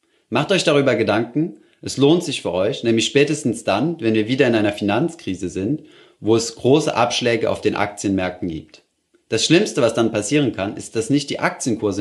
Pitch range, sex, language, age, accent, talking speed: 100-130 Hz, male, German, 30-49, German, 190 wpm